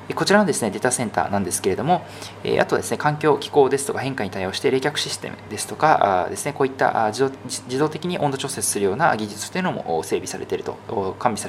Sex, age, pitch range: male, 20-39, 105-145 Hz